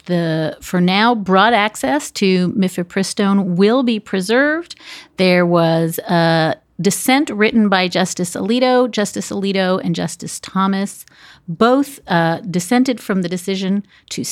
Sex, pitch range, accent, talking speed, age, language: female, 155-210 Hz, American, 125 wpm, 40-59, English